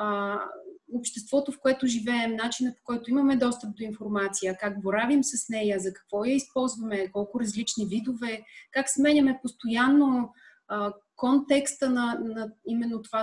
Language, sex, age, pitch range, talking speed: Bulgarian, female, 30-49, 205-265 Hz, 135 wpm